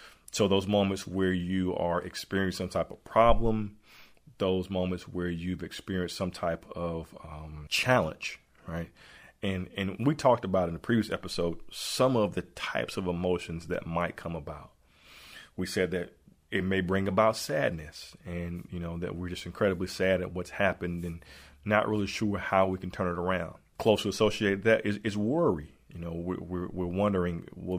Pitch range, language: 85-100 Hz, English